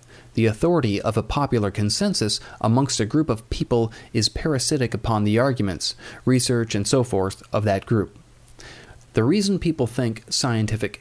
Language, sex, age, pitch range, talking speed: English, male, 40-59, 110-145 Hz, 155 wpm